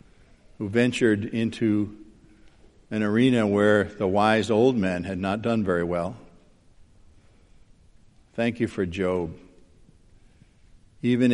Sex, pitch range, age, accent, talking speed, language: male, 95-110 Hz, 50-69, American, 105 wpm, English